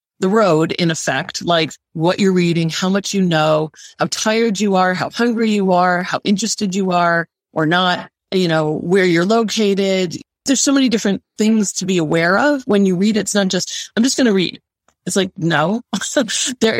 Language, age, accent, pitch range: English, 30-49, American, 170-210 Hz